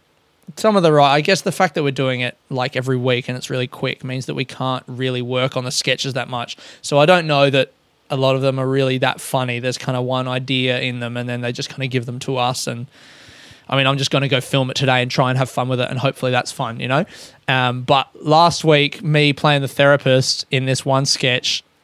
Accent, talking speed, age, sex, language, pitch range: Australian, 265 wpm, 20-39, male, English, 130-155 Hz